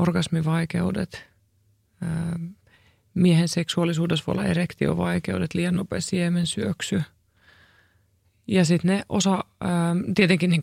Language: Finnish